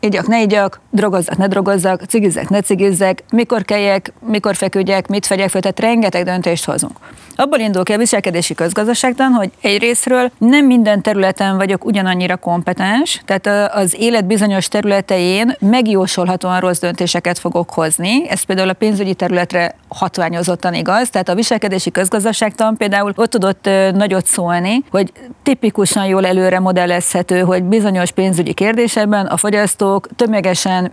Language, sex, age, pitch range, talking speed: Hungarian, female, 30-49, 190-225 Hz, 140 wpm